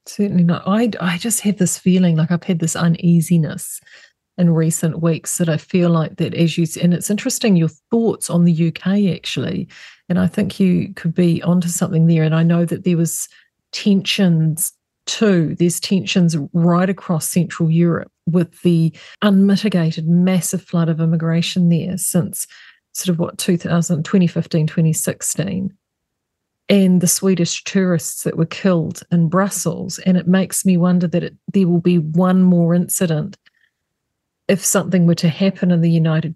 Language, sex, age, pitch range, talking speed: English, female, 40-59, 165-185 Hz, 160 wpm